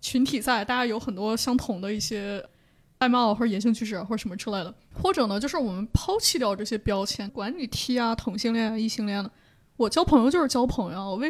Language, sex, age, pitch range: Chinese, female, 20-39, 210-260 Hz